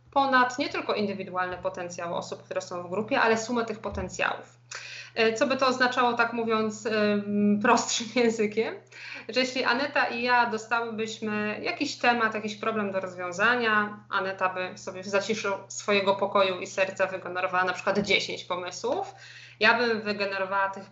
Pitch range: 190-235 Hz